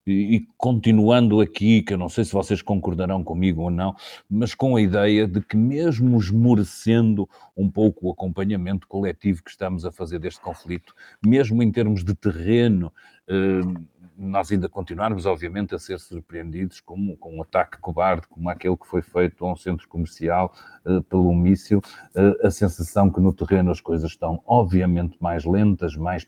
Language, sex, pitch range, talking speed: Portuguese, male, 85-105 Hz, 170 wpm